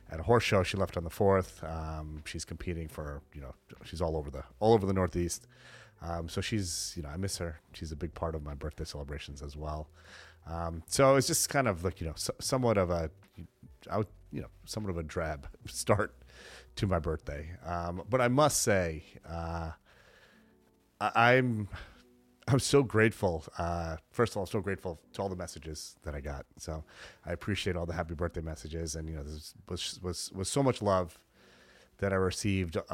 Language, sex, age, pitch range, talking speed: English, male, 30-49, 80-100 Hz, 200 wpm